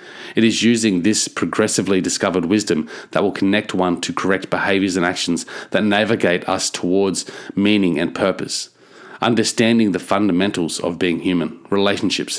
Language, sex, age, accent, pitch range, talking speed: English, male, 30-49, Australian, 90-105 Hz, 145 wpm